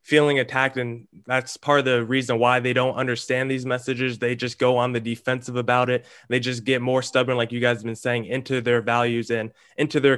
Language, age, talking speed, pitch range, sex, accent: English, 20-39, 230 wpm, 125-145 Hz, male, American